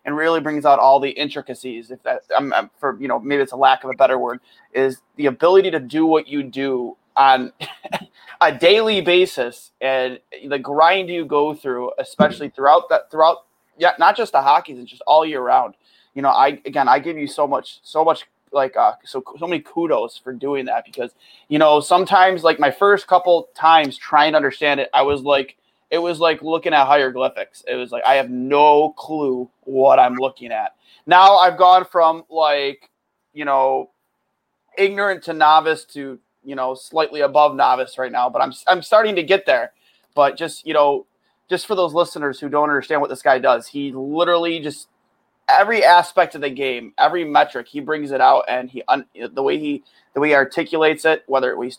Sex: male